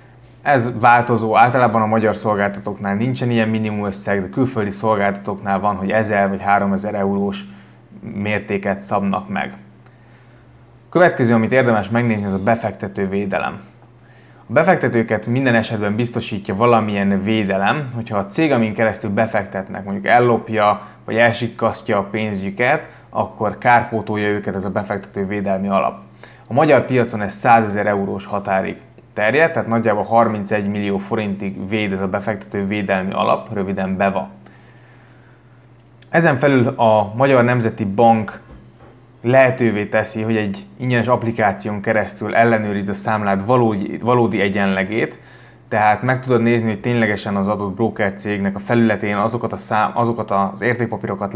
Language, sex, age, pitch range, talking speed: Hungarian, male, 20-39, 100-120 Hz, 135 wpm